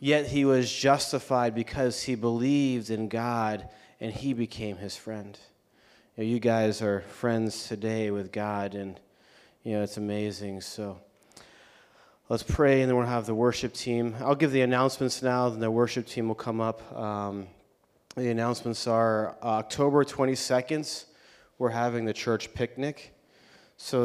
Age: 30-49